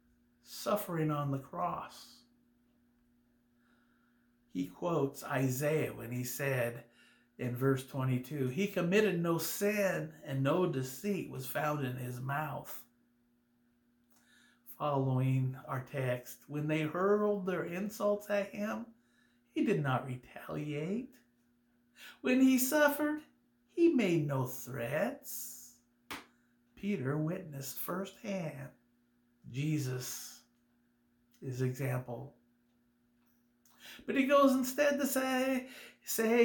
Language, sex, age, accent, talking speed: English, male, 50-69, American, 95 wpm